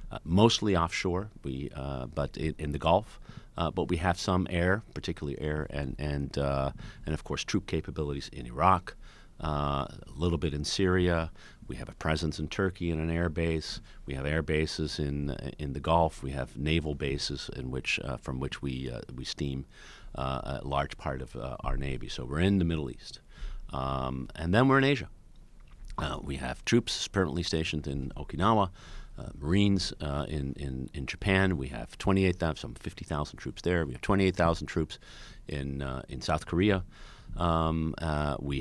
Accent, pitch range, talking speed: American, 70-95 Hz, 185 wpm